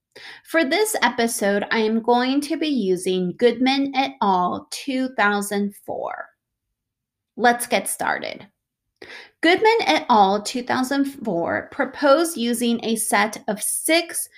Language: English